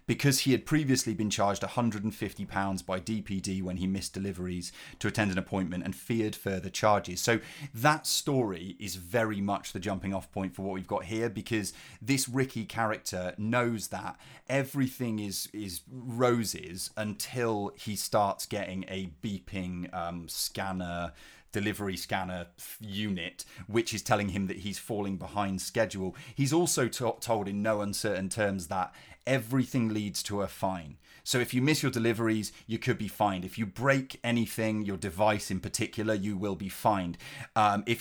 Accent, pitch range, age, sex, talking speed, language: British, 95-120 Hz, 30-49, male, 165 wpm, English